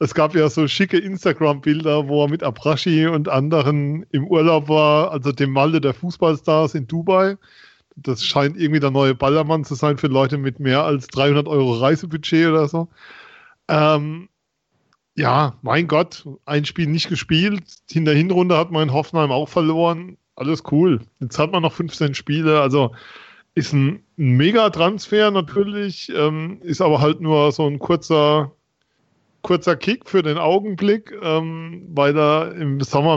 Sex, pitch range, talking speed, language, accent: male, 140-160 Hz, 155 wpm, German, German